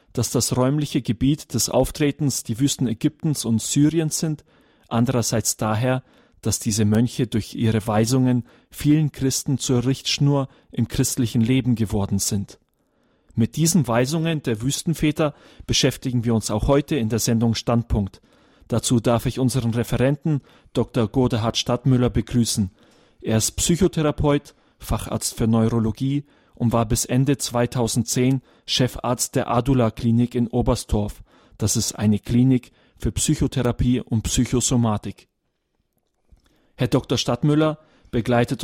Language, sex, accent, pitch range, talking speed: German, male, German, 115-135 Hz, 125 wpm